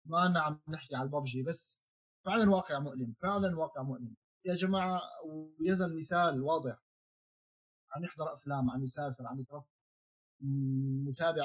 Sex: male